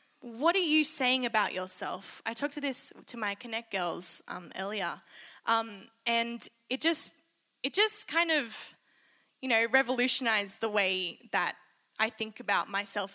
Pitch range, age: 220-290 Hz, 10-29